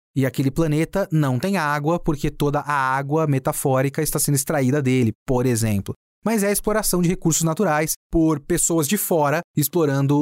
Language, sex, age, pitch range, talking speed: Portuguese, male, 30-49, 130-170 Hz, 170 wpm